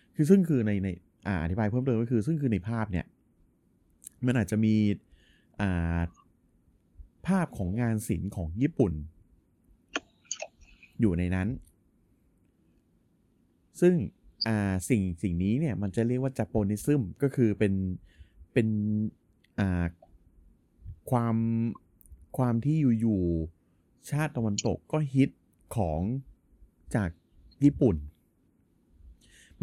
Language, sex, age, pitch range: Thai, male, 30-49, 85-115 Hz